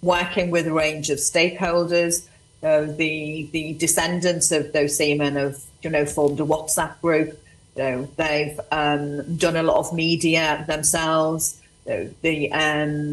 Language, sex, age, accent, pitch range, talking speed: English, female, 40-59, British, 155-170 Hz, 155 wpm